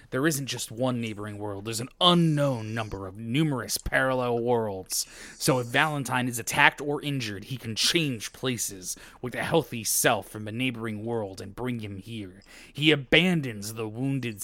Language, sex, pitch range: English, male, 105-130 Hz